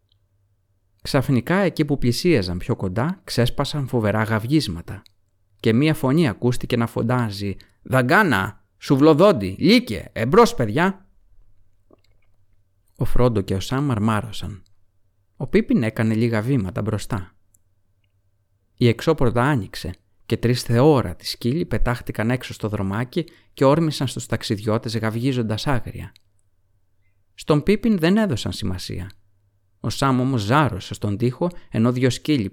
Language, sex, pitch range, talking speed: Greek, male, 100-130 Hz, 115 wpm